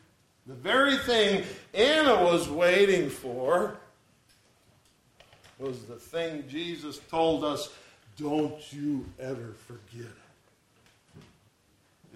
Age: 60-79